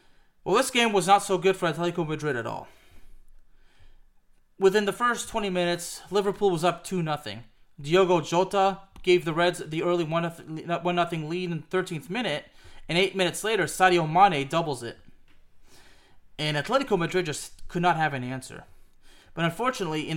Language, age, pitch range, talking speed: English, 30-49, 140-185 Hz, 160 wpm